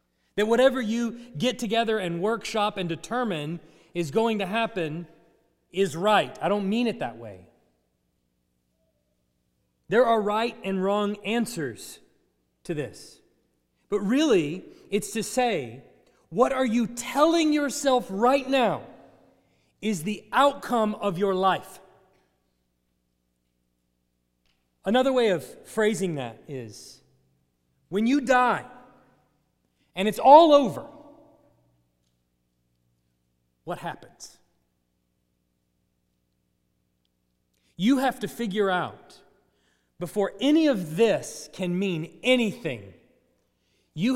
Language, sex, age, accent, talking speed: English, male, 40-59, American, 100 wpm